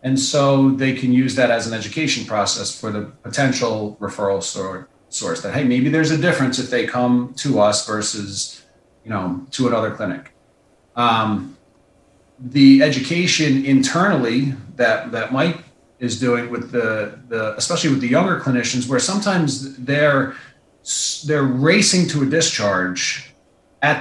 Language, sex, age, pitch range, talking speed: English, male, 40-59, 120-155 Hz, 145 wpm